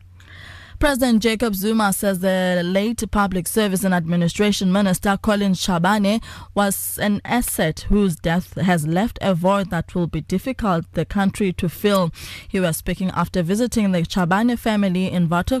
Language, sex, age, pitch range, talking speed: English, female, 20-39, 170-205 Hz, 155 wpm